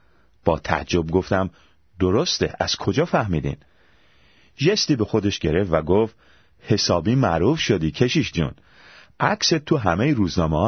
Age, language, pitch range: 40-59, Persian, 85-125 Hz